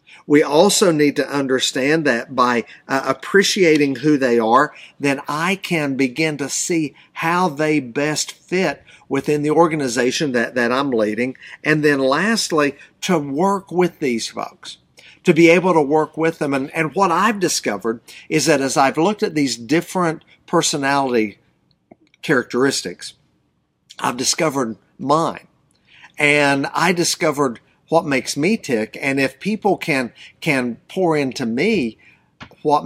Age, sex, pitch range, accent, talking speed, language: 50-69, male, 130-165 Hz, American, 140 wpm, English